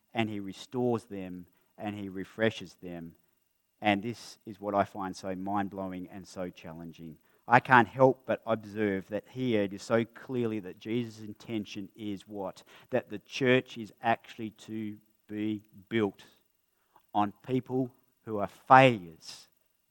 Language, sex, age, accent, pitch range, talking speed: English, male, 40-59, Australian, 100-125 Hz, 145 wpm